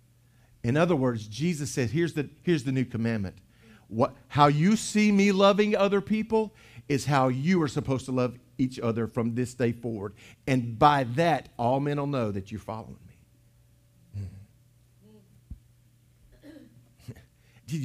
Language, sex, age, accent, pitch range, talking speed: English, male, 50-69, American, 110-145 Hz, 150 wpm